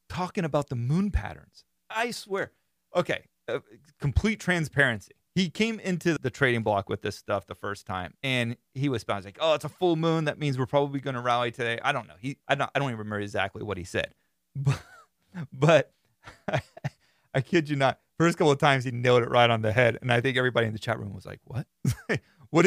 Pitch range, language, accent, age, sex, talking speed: 115-150 Hz, English, American, 30-49, male, 225 wpm